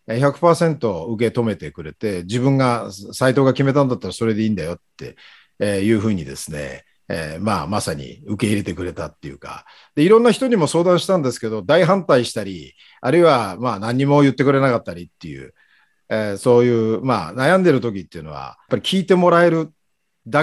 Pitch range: 115-170 Hz